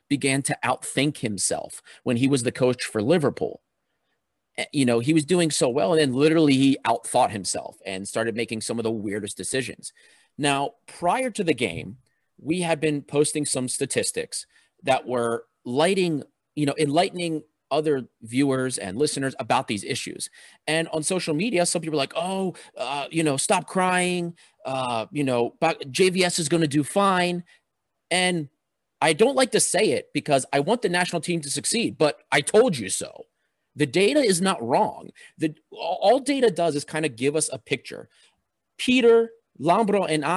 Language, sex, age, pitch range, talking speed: English, male, 30-49, 135-190 Hz, 175 wpm